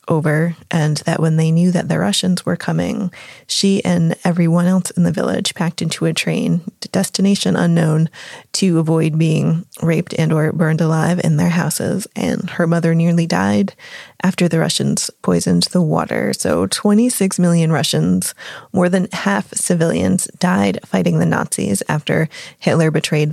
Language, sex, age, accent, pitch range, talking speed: English, female, 20-39, American, 165-200 Hz, 155 wpm